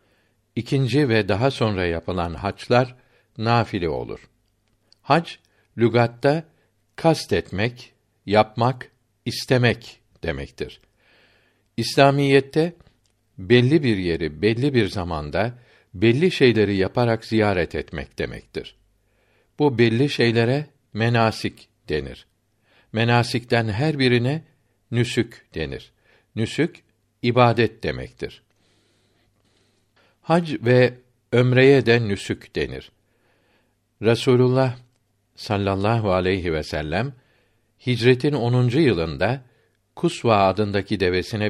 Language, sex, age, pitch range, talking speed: Turkish, male, 60-79, 105-125 Hz, 80 wpm